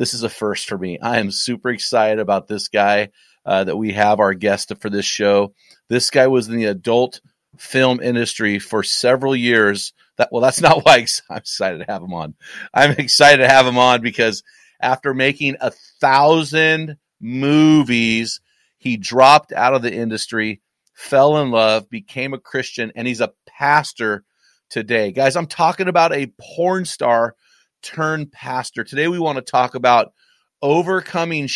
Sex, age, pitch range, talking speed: male, 30-49, 115-150 Hz, 170 wpm